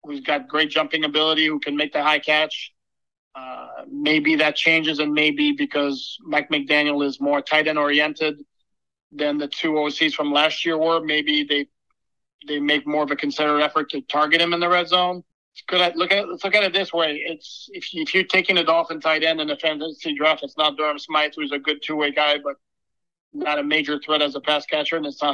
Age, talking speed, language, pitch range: 40-59, 225 wpm, English, 145-165 Hz